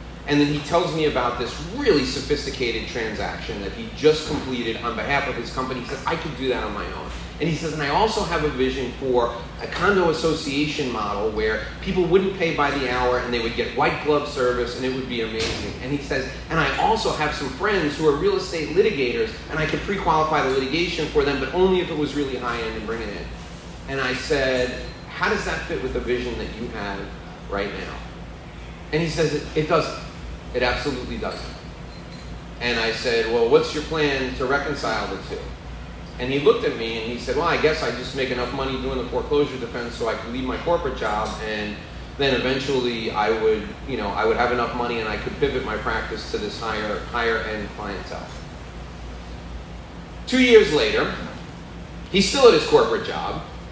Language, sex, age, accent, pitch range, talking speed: English, male, 30-49, American, 115-155 Hz, 210 wpm